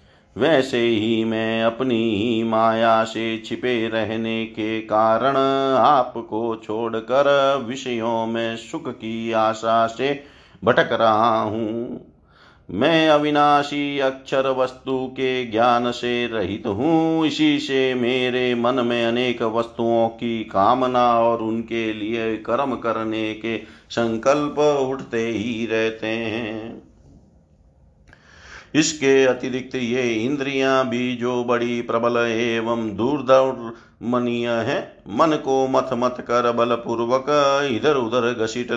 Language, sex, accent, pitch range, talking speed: Hindi, male, native, 115-135 Hz, 110 wpm